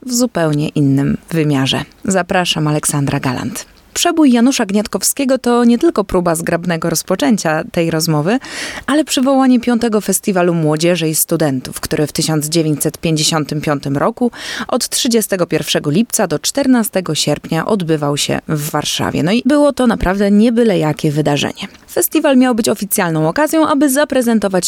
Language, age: Polish, 20-39